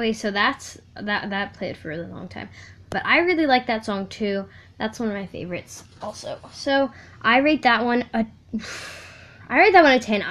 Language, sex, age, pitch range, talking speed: English, female, 10-29, 195-275 Hz, 205 wpm